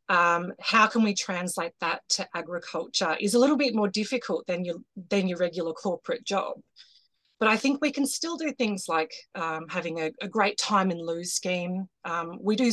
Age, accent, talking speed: 30-49, Australian, 200 wpm